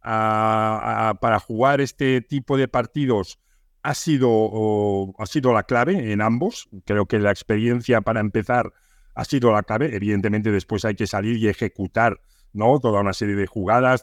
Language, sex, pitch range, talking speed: Spanish, male, 105-140 Hz, 170 wpm